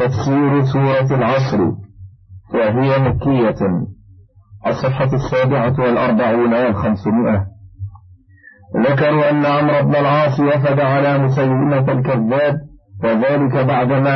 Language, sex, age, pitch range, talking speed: Arabic, male, 50-69, 105-135 Hz, 80 wpm